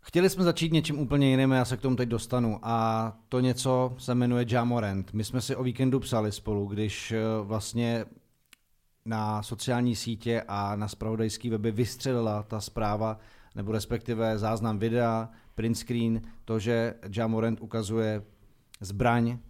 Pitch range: 110-125 Hz